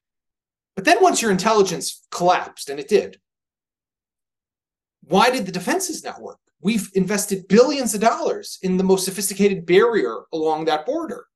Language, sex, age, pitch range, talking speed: English, male, 30-49, 170-220 Hz, 150 wpm